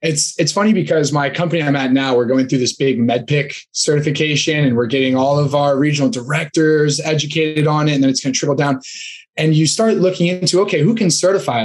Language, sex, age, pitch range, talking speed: English, male, 20-39, 135-160 Hz, 230 wpm